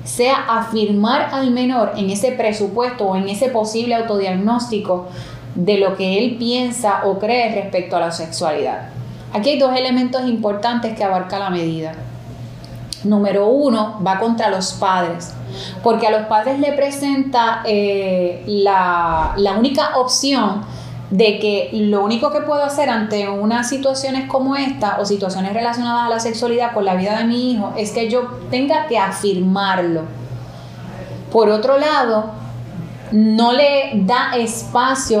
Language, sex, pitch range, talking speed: Spanish, female, 195-245 Hz, 145 wpm